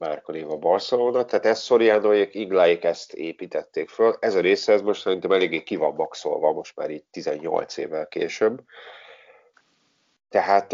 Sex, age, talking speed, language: male, 40-59, 150 wpm, Hungarian